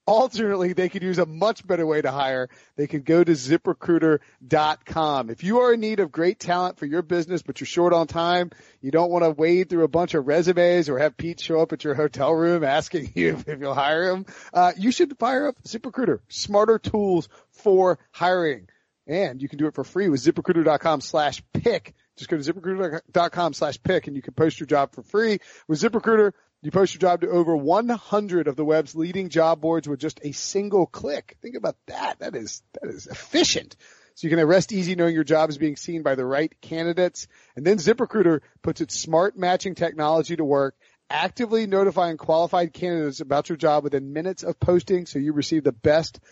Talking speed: 205 wpm